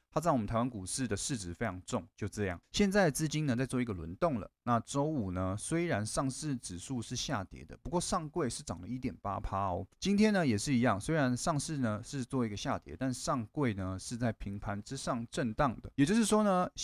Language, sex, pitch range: Chinese, male, 100-135 Hz